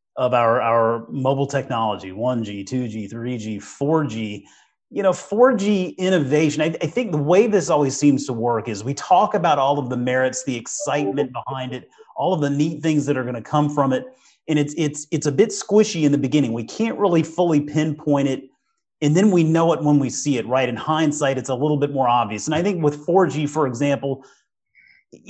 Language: English